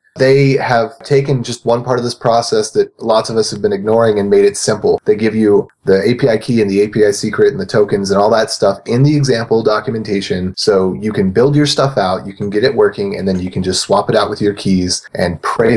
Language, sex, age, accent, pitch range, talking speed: English, male, 30-49, American, 100-130 Hz, 250 wpm